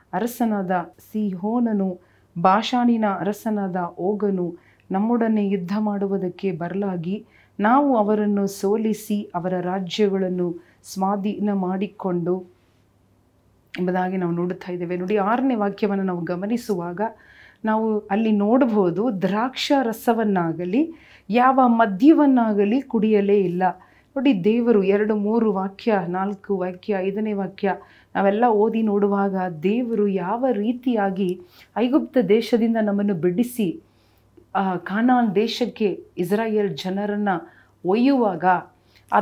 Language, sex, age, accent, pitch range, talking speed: Kannada, female, 40-59, native, 190-225 Hz, 90 wpm